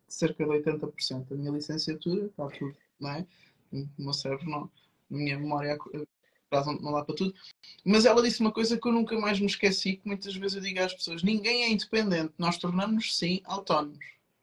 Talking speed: 190 wpm